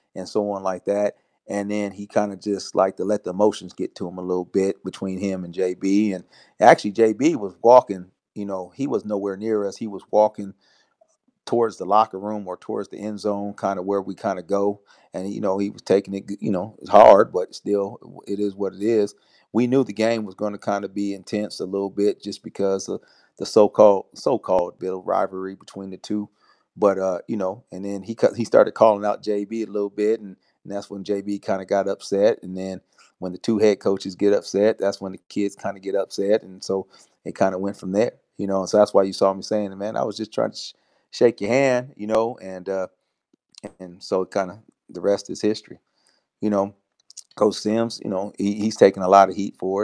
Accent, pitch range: American, 95-105 Hz